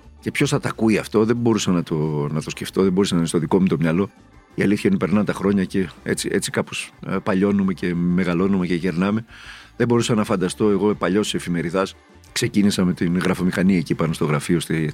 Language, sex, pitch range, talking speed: Greek, male, 85-120 Hz, 215 wpm